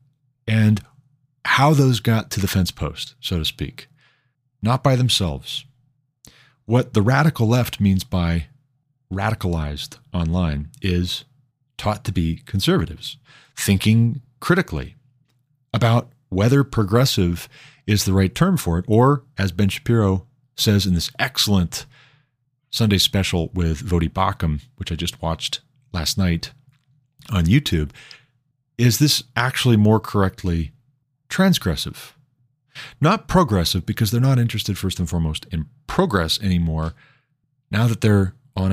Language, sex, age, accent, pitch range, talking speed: English, male, 40-59, American, 90-130 Hz, 125 wpm